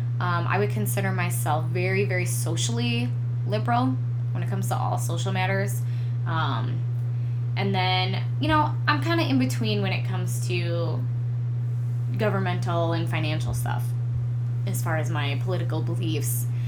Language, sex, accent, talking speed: English, female, American, 145 wpm